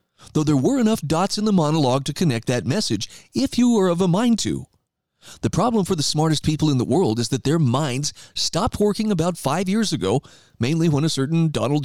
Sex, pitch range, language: male, 130-175 Hz, English